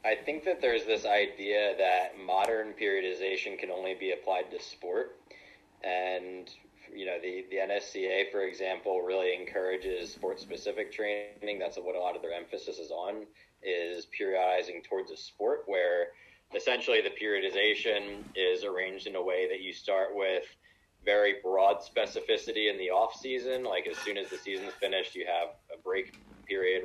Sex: male